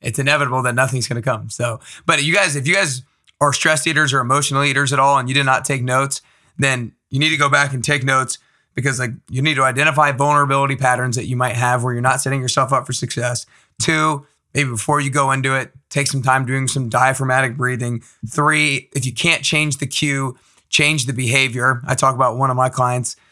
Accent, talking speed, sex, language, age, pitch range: American, 225 wpm, male, English, 30-49, 125-140 Hz